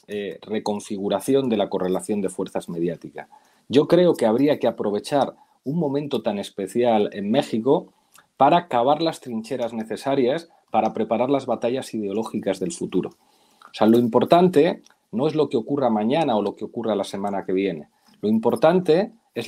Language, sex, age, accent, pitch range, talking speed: Spanish, male, 40-59, Spanish, 110-150 Hz, 165 wpm